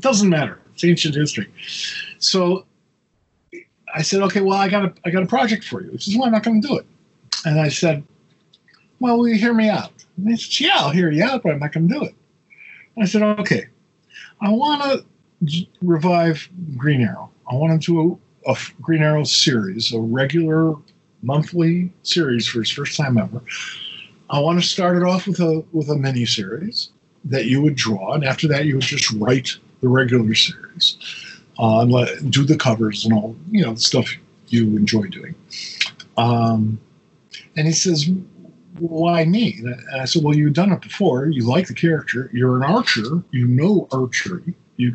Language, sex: English, male